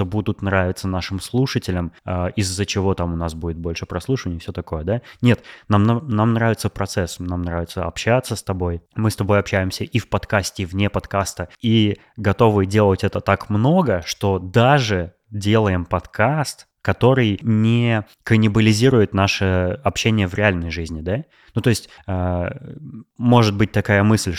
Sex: male